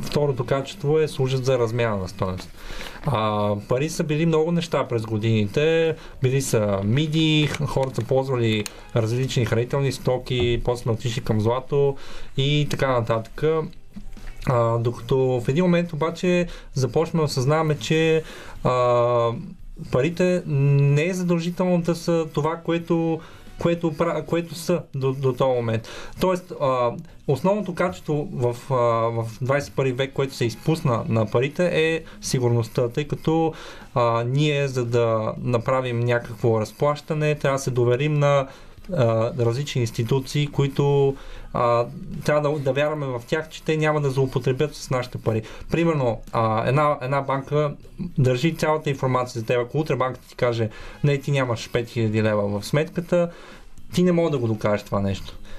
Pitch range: 120-155 Hz